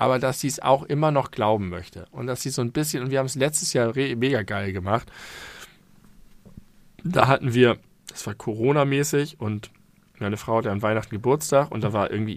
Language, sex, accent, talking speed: German, male, German, 210 wpm